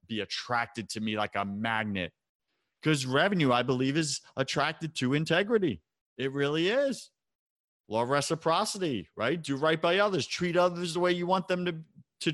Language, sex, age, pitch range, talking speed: English, male, 30-49, 115-165 Hz, 170 wpm